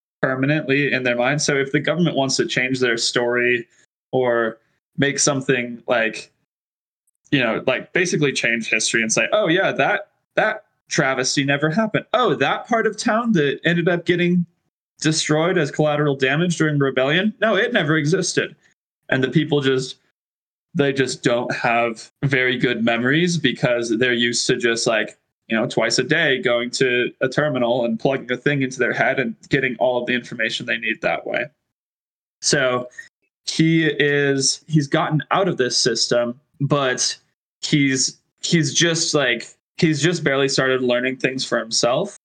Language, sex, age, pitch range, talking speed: English, male, 20-39, 125-155 Hz, 165 wpm